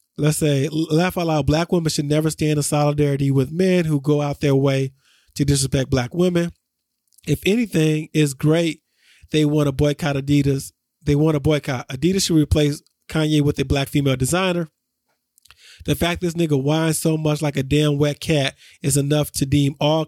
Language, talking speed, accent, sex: English, 185 wpm, American, male